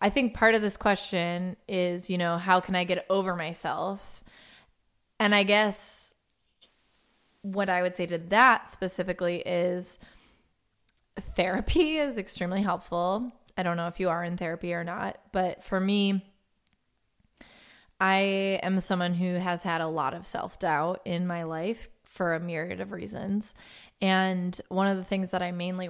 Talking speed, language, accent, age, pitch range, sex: 160 wpm, English, American, 20-39, 175-200 Hz, female